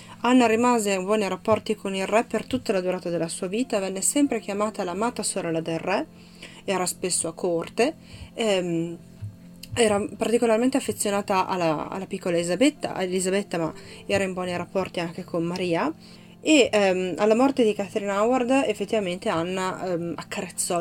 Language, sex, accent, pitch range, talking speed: Italian, female, native, 175-210 Hz, 155 wpm